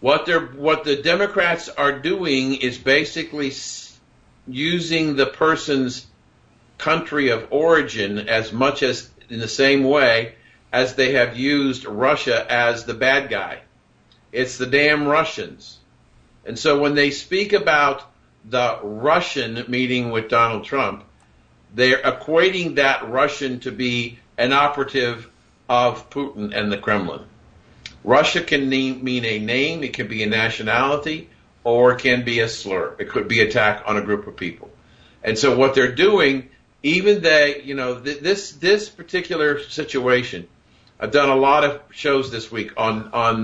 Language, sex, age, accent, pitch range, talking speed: English, male, 50-69, American, 115-145 Hz, 155 wpm